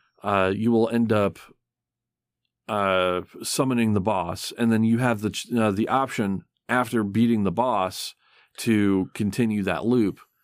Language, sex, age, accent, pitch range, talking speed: English, male, 40-59, American, 95-120 Hz, 145 wpm